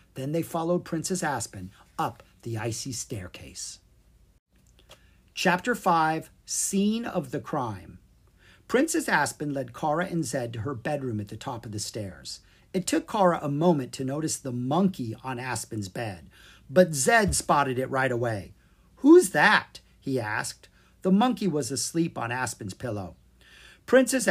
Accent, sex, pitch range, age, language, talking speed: American, male, 115-185 Hz, 50-69, English, 150 wpm